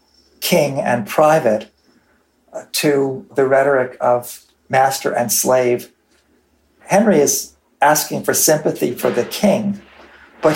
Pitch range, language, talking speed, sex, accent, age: 120-145 Hz, English, 115 wpm, male, American, 50-69